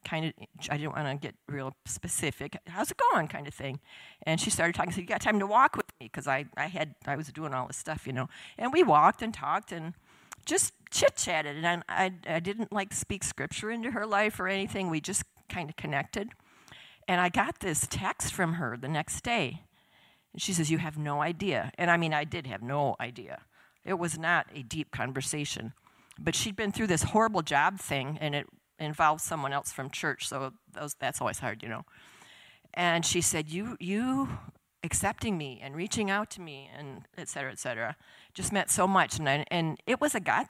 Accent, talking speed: American, 215 wpm